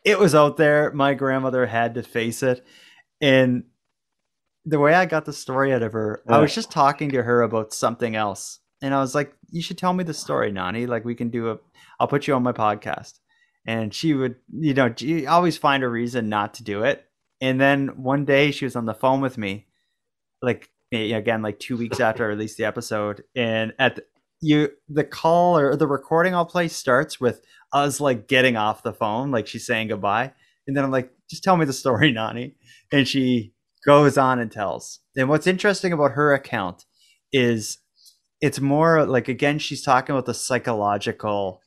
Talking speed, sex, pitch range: 205 wpm, male, 115-145 Hz